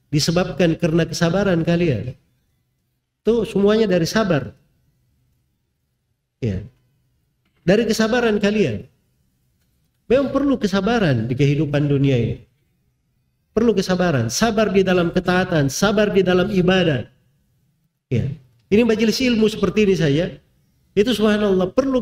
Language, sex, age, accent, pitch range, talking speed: Indonesian, male, 50-69, native, 130-220 Hz, 105 wpm